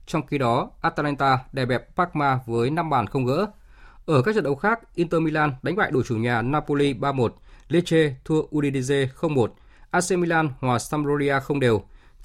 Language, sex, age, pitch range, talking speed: Vietnamese, male, 20-39, 115-155 Hz, 170 wpm